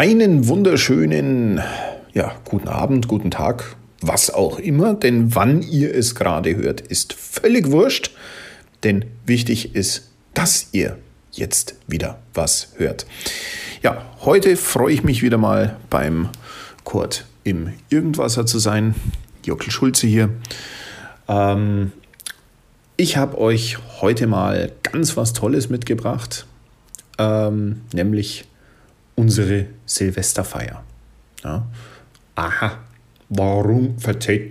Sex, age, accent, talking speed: male, 40-59, German, 105 wpm